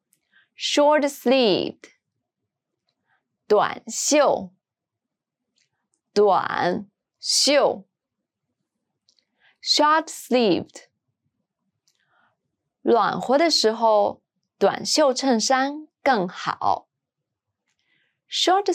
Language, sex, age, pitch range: English, female, 20-39, 195-280 Hz